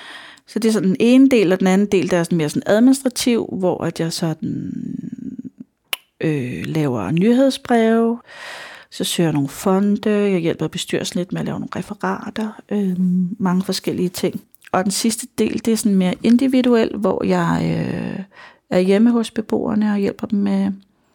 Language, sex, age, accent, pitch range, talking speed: Danish, female, 30-49, native, 175-210 Hz, 170 wpm